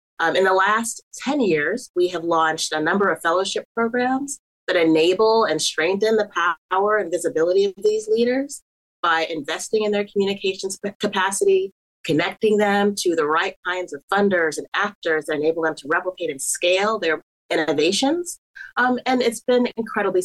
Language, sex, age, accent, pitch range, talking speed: English, female, 30-49, American, 165-220 Hz, 165 wpm